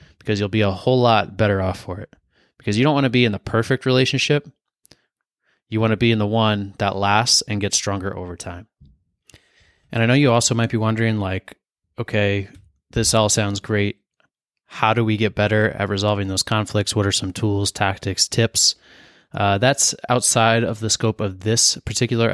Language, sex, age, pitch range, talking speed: English, male, 20-39, 100-120 Hz, 195 wpm